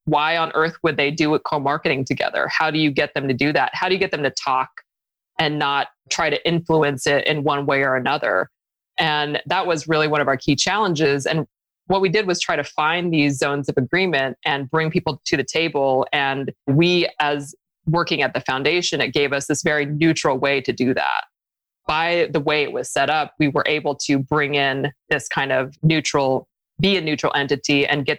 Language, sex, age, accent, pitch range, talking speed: English, female, 20-39, American, 140-165 Hz, 220 wpm